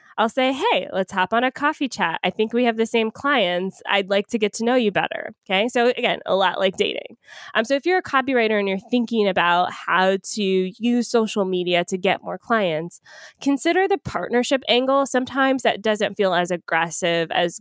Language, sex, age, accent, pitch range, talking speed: English, female, 20-39, American, 185-245 Hz, 210 wpm